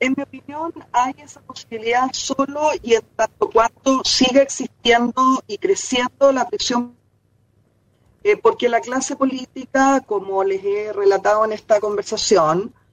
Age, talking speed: 40-59, 135 wpm